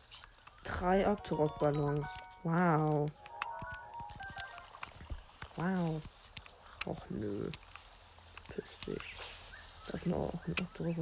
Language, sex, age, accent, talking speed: German, female, 50-69, German, 75 wpm